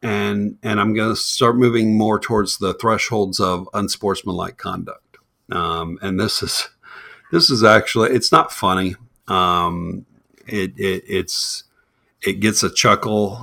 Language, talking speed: English, 145 wpm